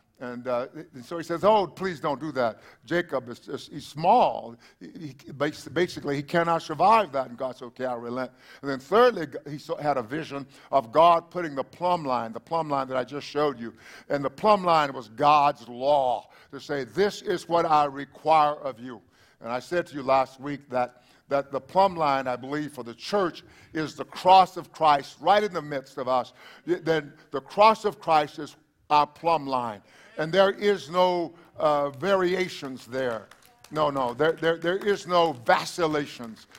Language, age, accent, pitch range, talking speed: English, 50-69, American, 135-165 Hz, 190 wpm